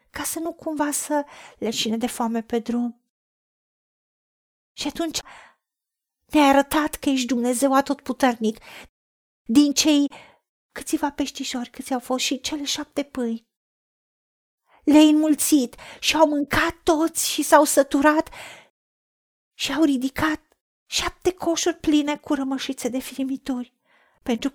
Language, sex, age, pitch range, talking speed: Romanian, female, 40-59, 255-305 Hz, 120 wpm